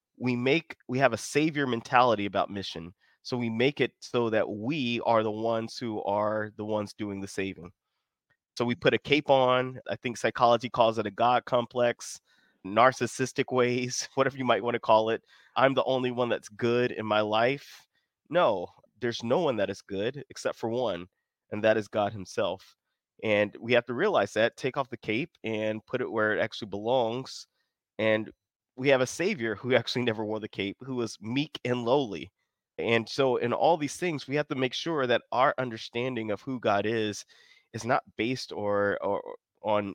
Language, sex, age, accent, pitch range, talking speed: English, male, 20-39, American, 105-125 Hz, 195 wpm